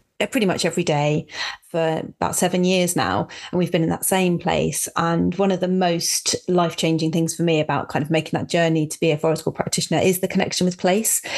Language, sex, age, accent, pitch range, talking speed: English, female, 30-49, British, 160-195 Hz, 220 wpm